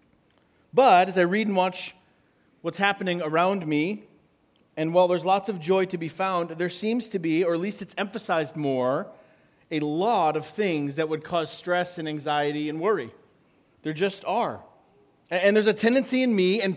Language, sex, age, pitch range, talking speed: English, male, 40-59, 170-210 Hz, 185 wpm